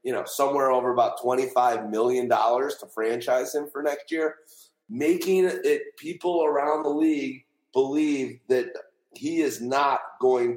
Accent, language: American, English